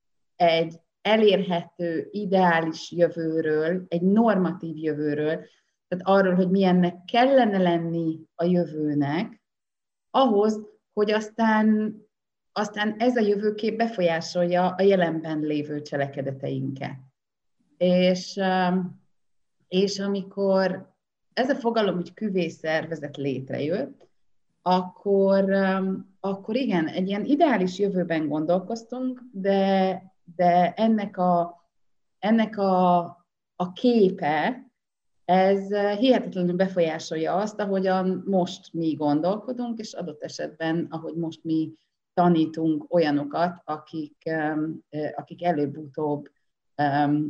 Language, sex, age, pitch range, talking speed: Hungarian, female, 30-49, 160-200 Hz, 90 wpm